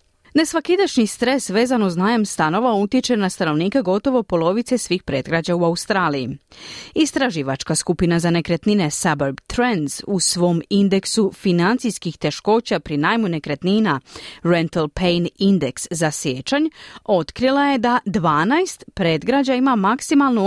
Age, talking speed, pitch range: 30-49, 120 wpm, 165-260 Hz